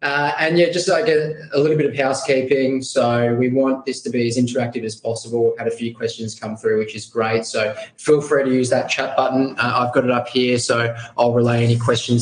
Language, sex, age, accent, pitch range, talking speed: English, male, 20-39, Australian, 115-140 Hz, 245 wpm